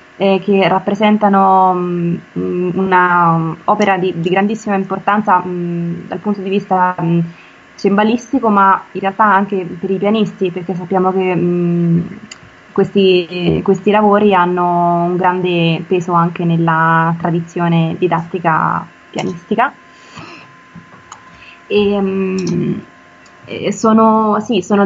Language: Italian